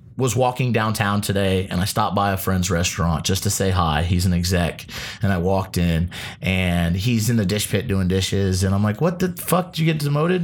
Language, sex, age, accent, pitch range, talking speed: English, male, 30-49, American, 105-160 Hz, 230 wpm